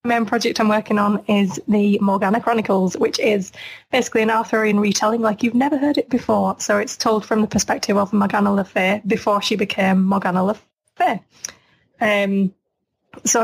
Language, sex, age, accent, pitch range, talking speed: English, female, 20-39, British, 195-220 Hz, 180 wpm